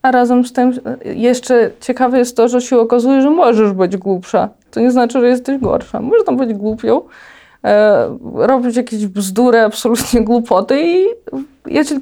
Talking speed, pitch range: 165 wpm, 230-275 Hz